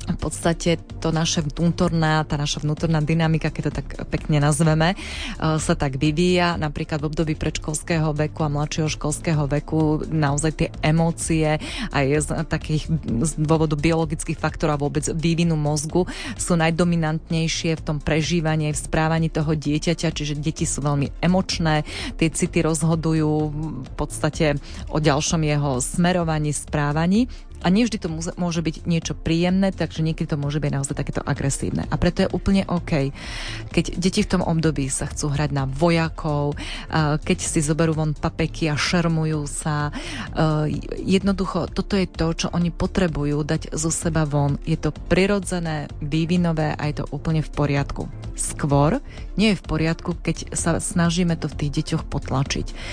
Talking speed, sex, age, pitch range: 155 wpm, female, 20-39, 150-170 Hz